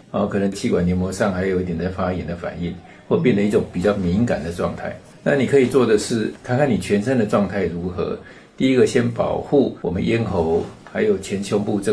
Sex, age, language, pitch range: male, 60-79, Chinese, 90-115 Hz